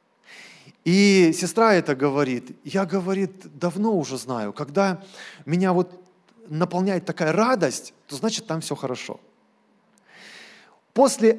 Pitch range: 175-220 Hz